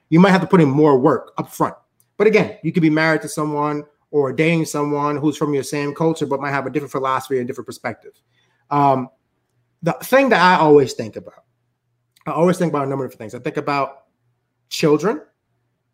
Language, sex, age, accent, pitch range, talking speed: English, male, 30-49, American, 135-165 Hz, 205 wpm